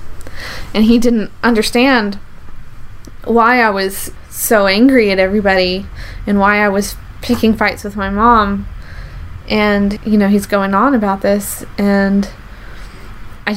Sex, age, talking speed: female, 20-39, 135 wpm